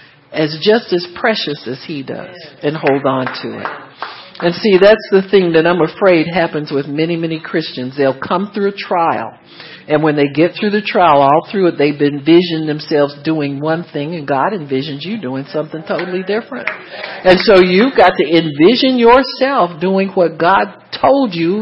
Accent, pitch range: American, 150-200 Hz